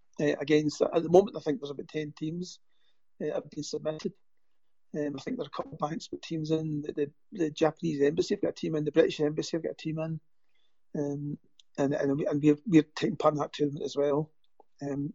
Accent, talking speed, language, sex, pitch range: British, 240 wpm, English, male, 145-160 Hz